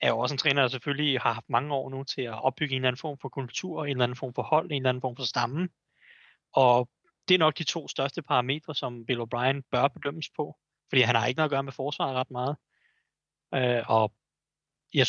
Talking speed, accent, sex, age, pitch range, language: 240 wpm, native, male, 30-49, 130-160 Hz, Danish